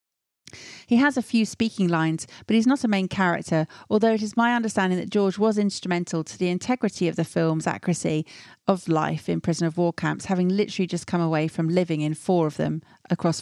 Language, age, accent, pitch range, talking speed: English, 40-59, British, 170-220 Hz, 210 wpm